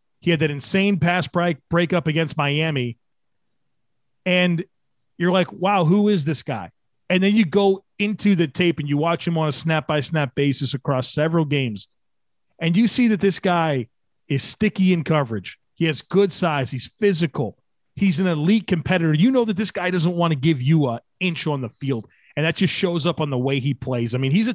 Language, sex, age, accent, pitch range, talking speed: English, male, 30-49, American, 145-185 Hz, 210 wpm